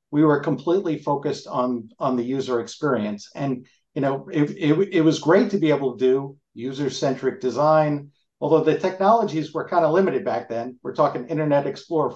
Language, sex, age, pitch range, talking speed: English, male, 50-69, 130-165 Hz, 185 wpm